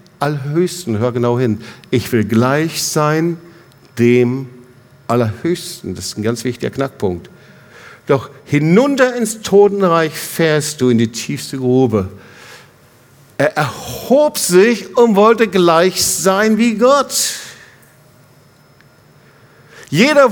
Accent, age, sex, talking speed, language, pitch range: German, 50-69, male, 105 wpm, German, 140-230 Hz